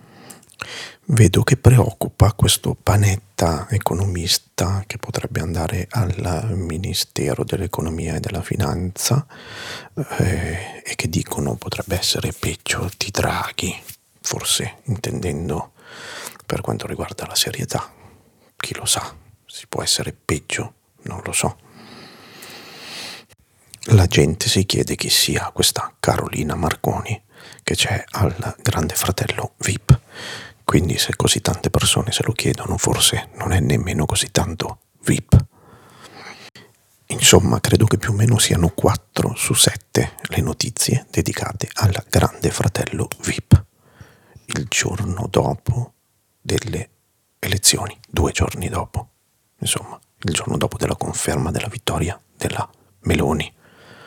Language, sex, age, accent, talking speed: Italian, male, 50-69, native, 120 wpm